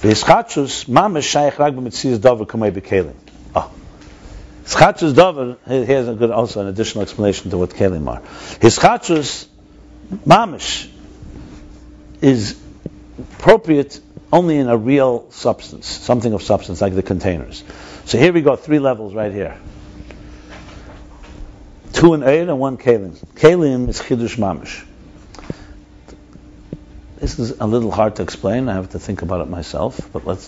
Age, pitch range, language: 60-79, 90-125 Hz, English